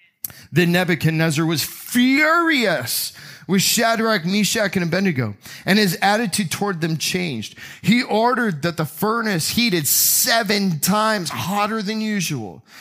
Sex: male